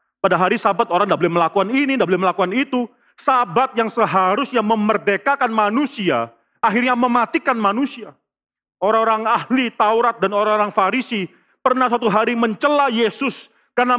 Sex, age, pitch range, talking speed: male, 40-59, 210-250 Hz, 135 wpm